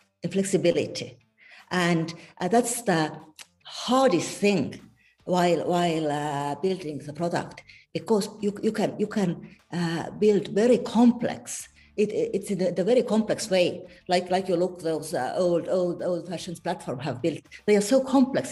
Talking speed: 155 wpm